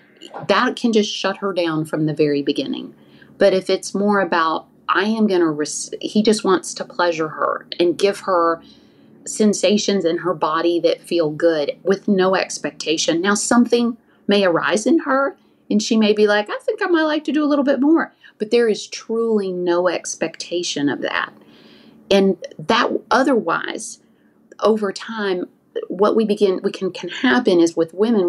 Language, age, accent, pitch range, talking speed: English, 40-59, American, 175-225 Hz, 175 wpm